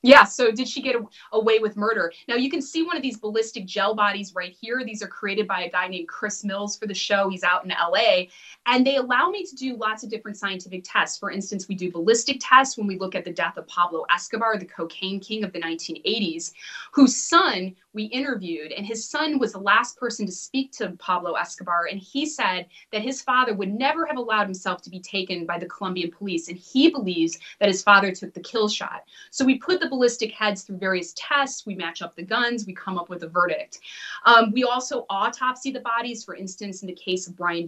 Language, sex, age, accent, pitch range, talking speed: English, female, 20-39, American, 180-240 Hz, 230 wpm